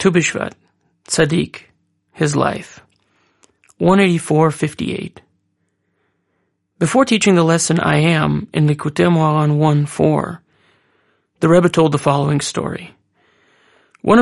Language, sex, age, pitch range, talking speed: English, male, 30-49, 150-180 Hz, 105 wpm